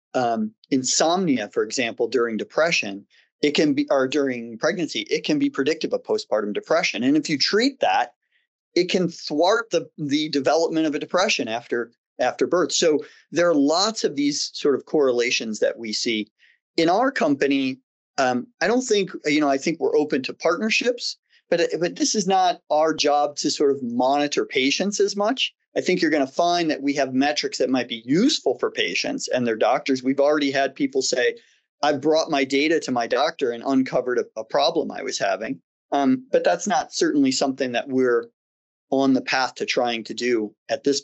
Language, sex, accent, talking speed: English, male, American, 195 wpm